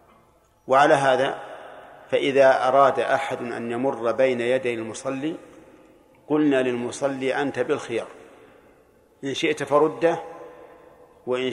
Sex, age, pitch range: male, 50-69, 125-150 Hz